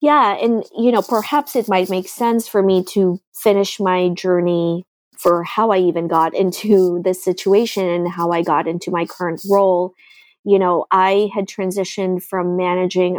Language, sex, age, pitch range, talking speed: English, female, 20-39, 175-195 Hz, 175 wpm